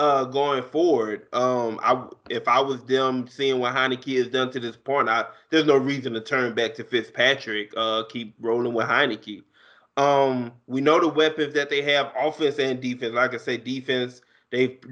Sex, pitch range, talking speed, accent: male, 115-135 Hz, 195 wpm, American